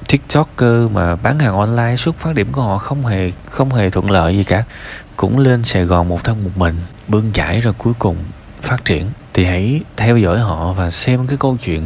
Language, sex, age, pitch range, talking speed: Vietnamese, male, 20-39, 90-125 Hz, 220 wpm